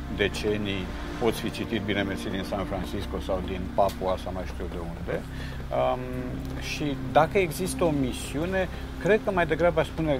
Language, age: Romanian, 50-69